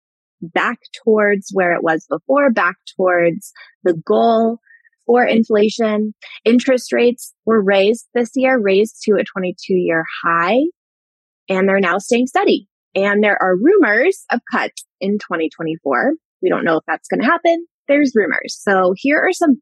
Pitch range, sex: 185-245 Hz, female